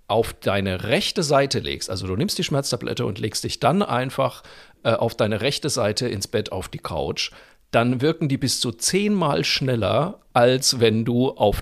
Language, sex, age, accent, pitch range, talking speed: German, male, 40-59, German, 115-145 Hz, 185 wpm